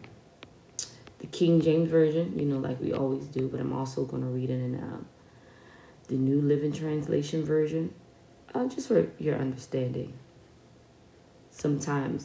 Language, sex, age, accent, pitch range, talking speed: English, female, 20-39, American, 145-190 Hz, 140 wpm